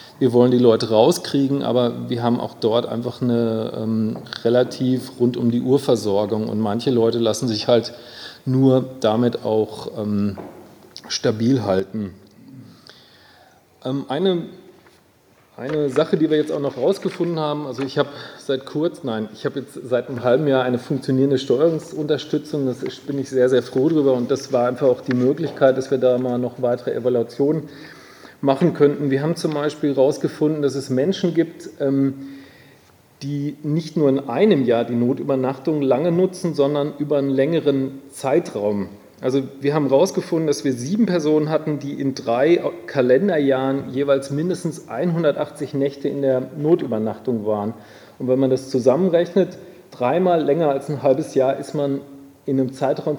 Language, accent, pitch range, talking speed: German, German, 120-150 Hz, 160 wpm